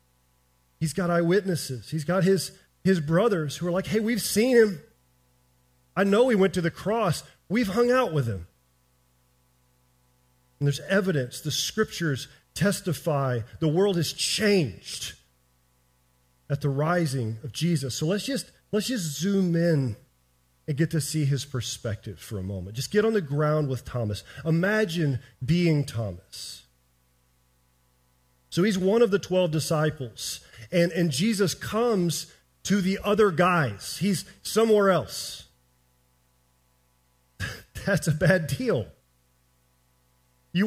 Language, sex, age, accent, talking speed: English, male, 40-59, American, 135 wpm